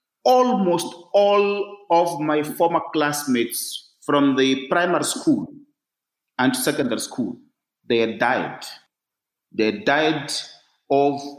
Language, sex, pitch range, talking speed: English, male, 140-220 Hz, 95 wpm